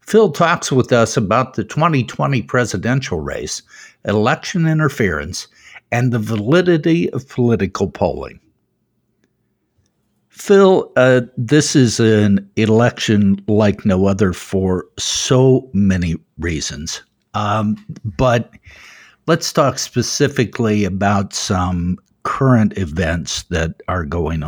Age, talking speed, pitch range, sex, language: 60-79, 105 wpm, 95-125 Hz, male, English